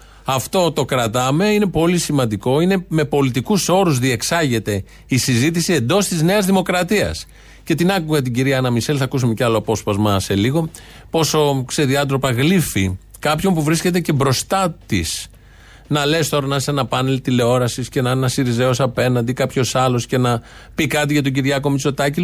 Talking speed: 165 wpm